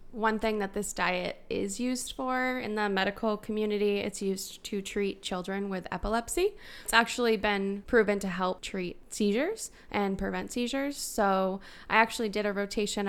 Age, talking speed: 10-29, 165 wpm